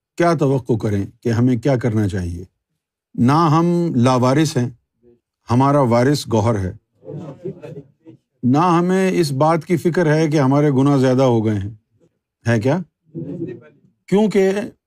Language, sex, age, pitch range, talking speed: Urdu, male, 50-69, 130-170 Hz, 135 wpm